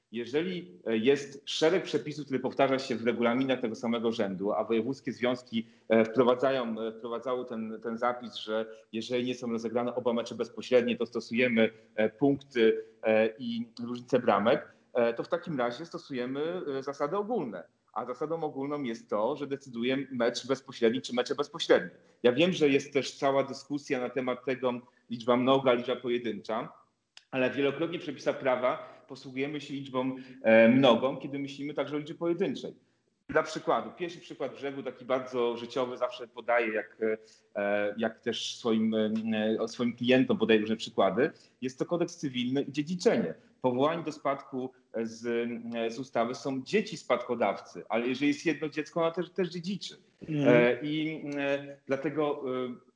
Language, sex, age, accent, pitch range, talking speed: Polish, male, 30-49, native, 115-145 Hz, 145 wpm